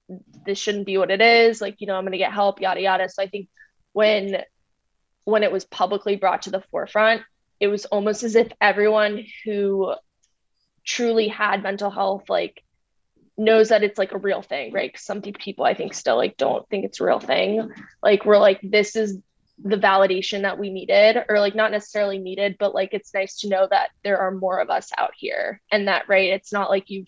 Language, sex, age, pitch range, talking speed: English, female, 20-39, 195-210 Hz, 210 wpm